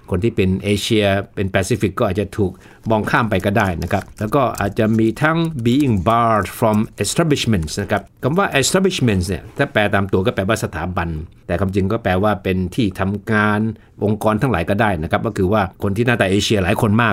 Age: 60-79